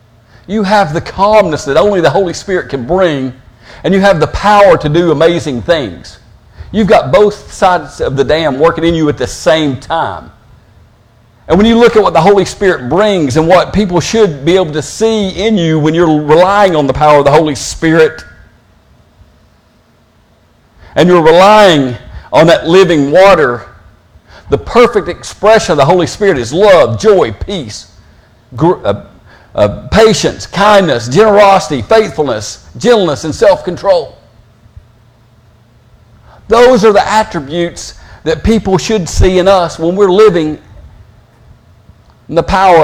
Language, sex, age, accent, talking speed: English, male, 50-69, American, 150 wpm